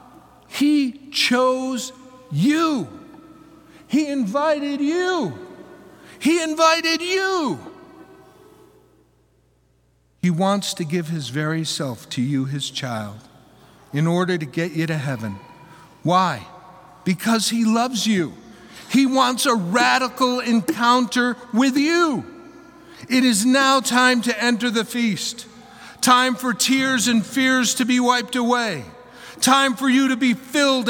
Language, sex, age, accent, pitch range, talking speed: English, male, 60-79, American, 205-285 Hz, 120 wpm